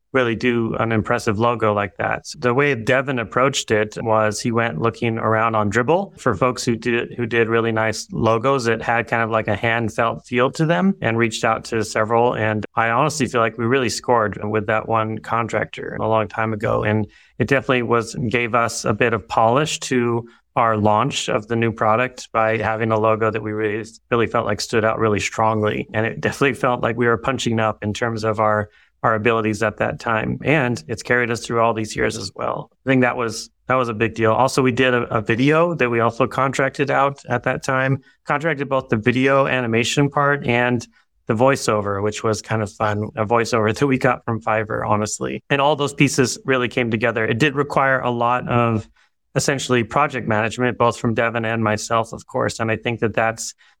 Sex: male